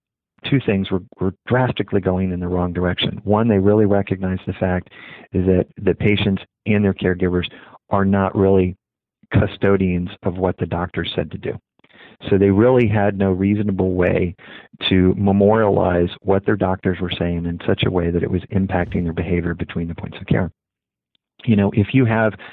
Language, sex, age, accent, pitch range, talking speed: English, male, 50-69, American, 90-105 Hz, 180 wpm